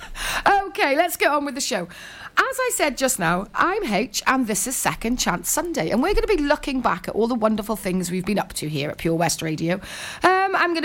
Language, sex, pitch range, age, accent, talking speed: English, female, 195-315 Hz, 30-49, British, 245 wpm